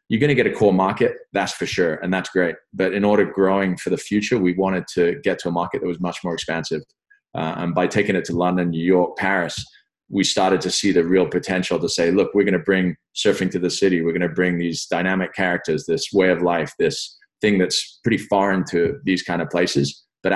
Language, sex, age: English, male, 20-39